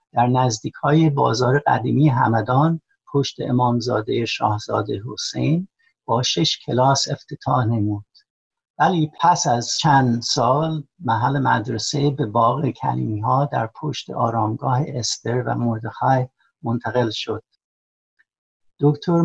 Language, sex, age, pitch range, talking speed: Persian, male, 60-79, 120-150 Hz, 105 wpm